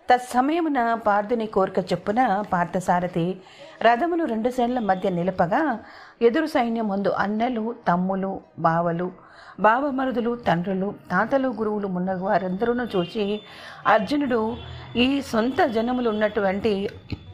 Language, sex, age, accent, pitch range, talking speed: Telugu, female, 40-59, native, 185-240 Hz, 95 wpm